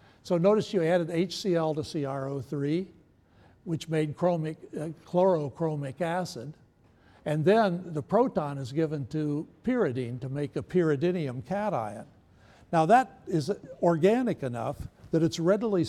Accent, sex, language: American, male, English